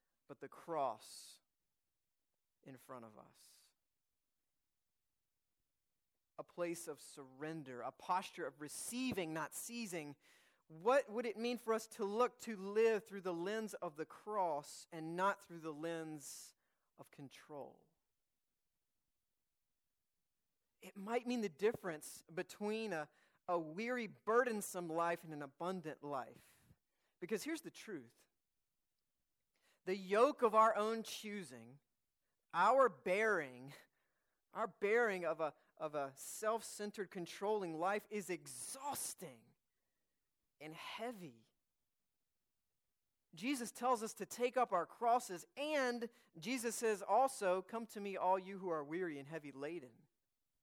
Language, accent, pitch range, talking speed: English, American, 155-220 Hz, 120 wpm